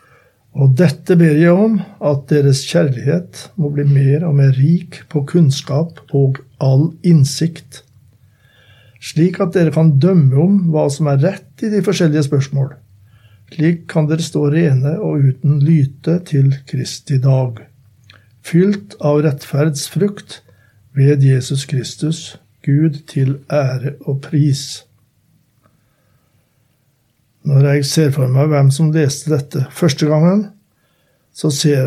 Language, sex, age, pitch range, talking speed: English, male, 60-79, 135-160 Hz, 130 wpm